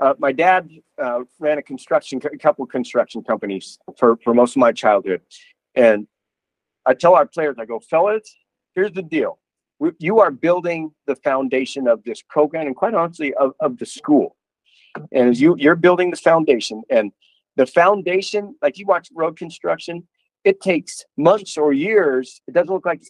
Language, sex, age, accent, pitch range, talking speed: English, male, 50-69, American, 130-175 Hz, 180 wpm